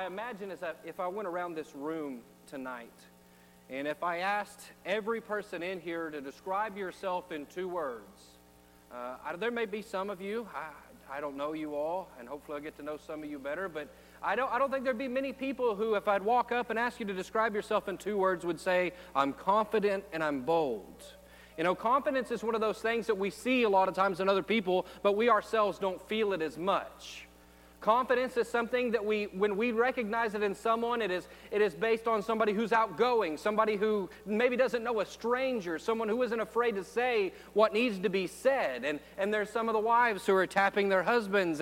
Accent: American